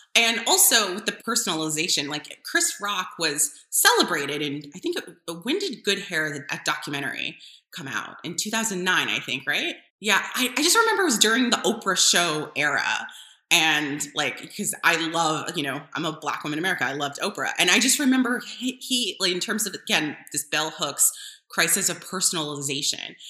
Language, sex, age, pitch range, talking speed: English, female, 20-39, 155-210 Hz, 180 wpm